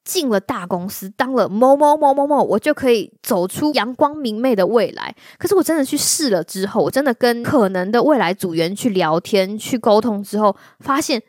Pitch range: 185-250 Hz